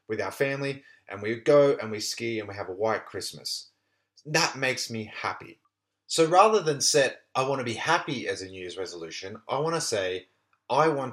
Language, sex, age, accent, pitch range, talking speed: English, male, 30-49, Australian, 105-140 Hz, 210 wpm